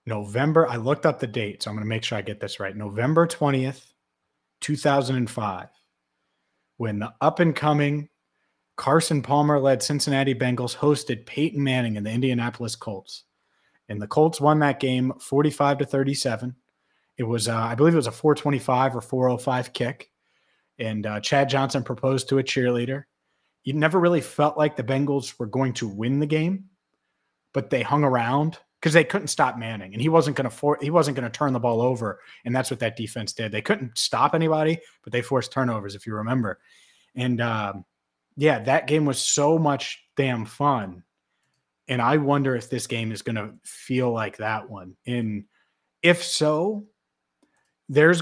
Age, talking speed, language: 30-49, 175 wpm, English